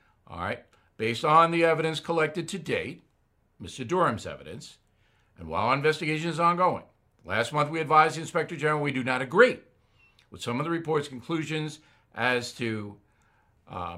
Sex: male